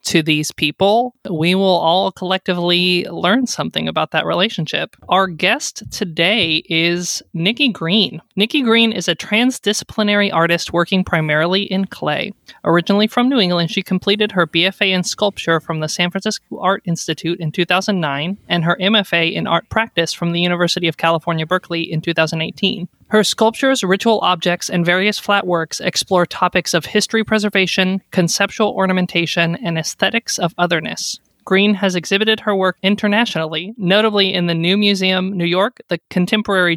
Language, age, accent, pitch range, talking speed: English, 20-39, American, 170-205 Hz, 155 wpm